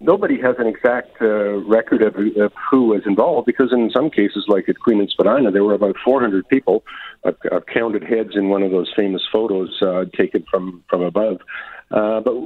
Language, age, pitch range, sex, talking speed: English, 50-69, 95-120 Hz, male, 195 wpm